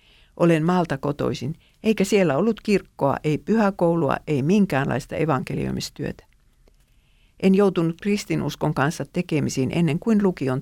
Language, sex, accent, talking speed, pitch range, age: Finnish, female, native, 115 wpm, 145-190 Hz, 50-69